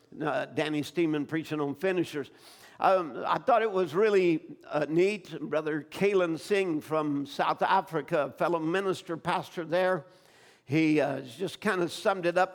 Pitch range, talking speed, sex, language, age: 150-185 Hz, 155 wpm, male, English, 60-79